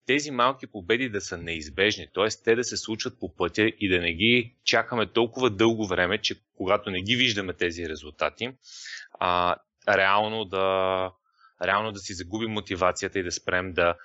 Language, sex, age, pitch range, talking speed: Bulgarian, male, 30-49, 90-110 Hz, 165 wpm